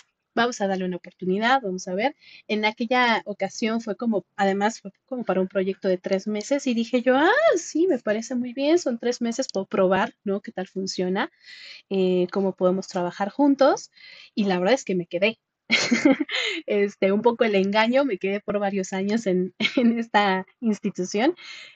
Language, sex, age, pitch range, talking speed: Spanish, female, 30-49, 190-240 Hz, 180 wpm